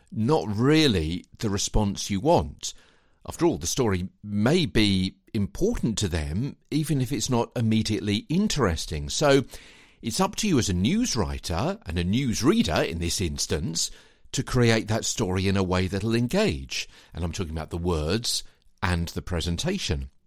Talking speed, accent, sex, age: 165 wpm, British, male, 50-69